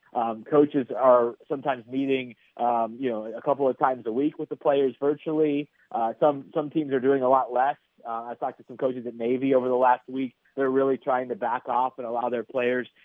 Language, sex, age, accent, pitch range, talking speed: English, male, 30-49, American, 120-140 Hz, 225 wpm